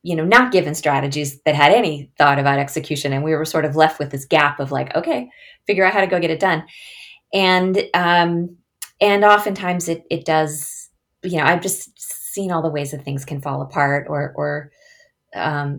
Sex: female